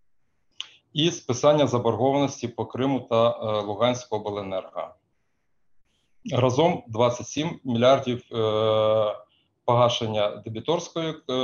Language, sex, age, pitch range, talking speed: Ukrainian, male, 20-39, 110-135 Hz, 70 wpm